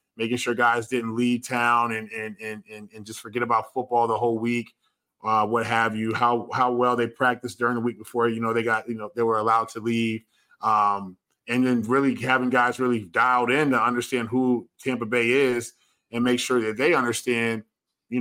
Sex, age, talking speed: male, 20-39, 210 wpm